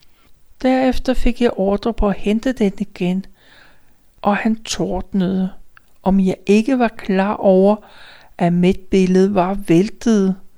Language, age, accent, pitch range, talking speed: Danish, 60-79, native, 185-220 Hz, 130 wpm